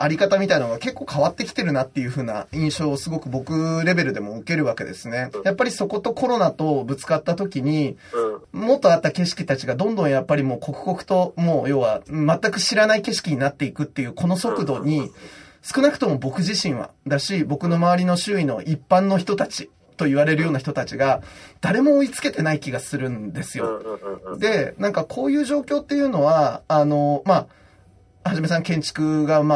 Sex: male